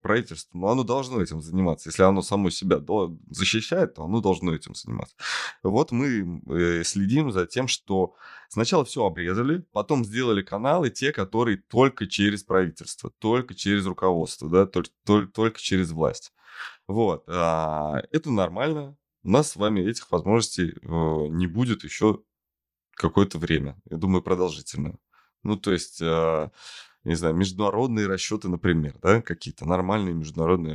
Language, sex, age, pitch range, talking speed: Russian, male, 20-39, 85-110 Hz, 135 wpm